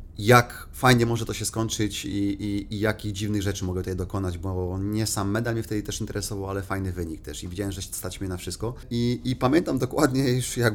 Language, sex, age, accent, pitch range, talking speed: Polish, male, 30-49, native, 95-110 Hz, 225 wpm